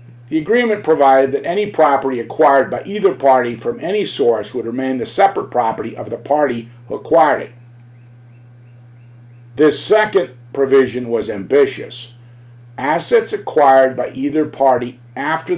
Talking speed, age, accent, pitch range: 135 wpm, 50-69, American, 120-150 Hz